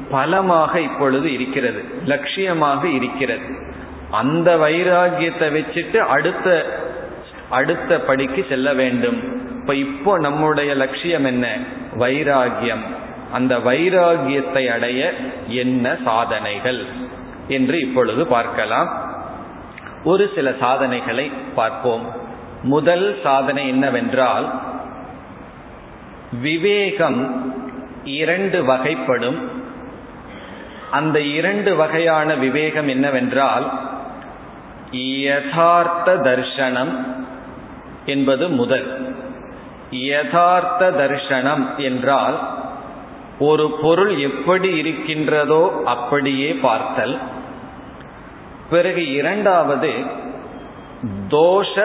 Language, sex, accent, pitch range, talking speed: Tamil, male, native, 130-165 Hz, 65 wpm